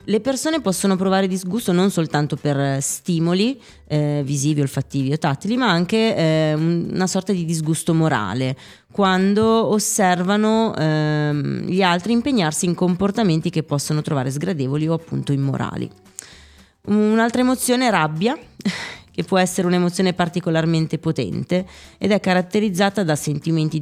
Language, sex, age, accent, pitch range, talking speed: Italian, female, 20-39, native, 150-190 Hz, 130 wpm